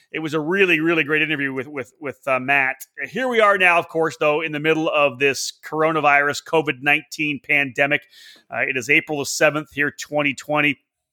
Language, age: English, 30-49